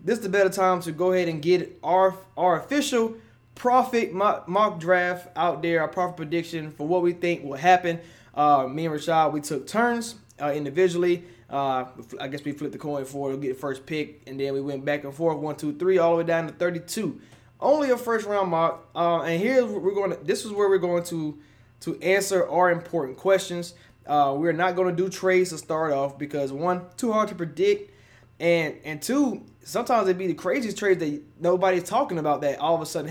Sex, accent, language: male, American, English